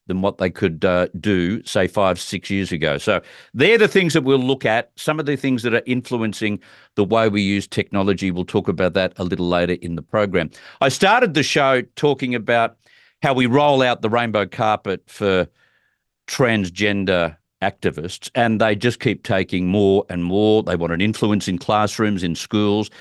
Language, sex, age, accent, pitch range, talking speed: English, male, 50-69, Australian, 100-135 Hz, 190 wpm